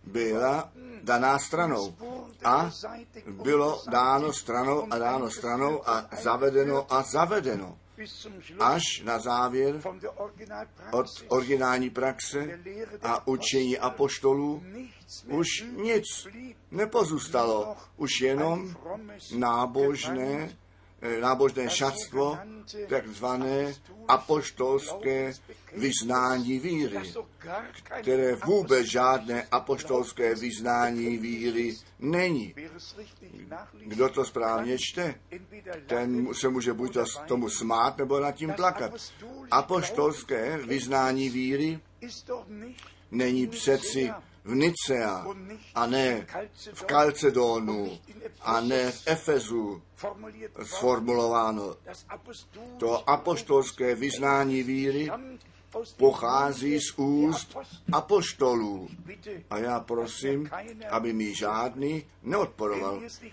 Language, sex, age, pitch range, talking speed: Czech, male, 50-69, 120-160 Hz, 80 wpm